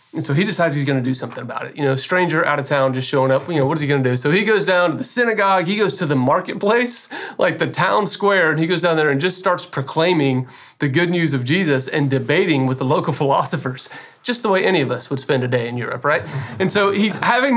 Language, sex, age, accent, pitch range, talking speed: English, male, 30-49, American, 140-190 Hz, 275 wpm